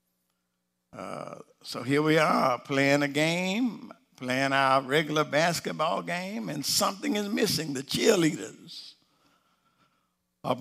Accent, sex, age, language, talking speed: American, male, 60-79, English, 115 wpm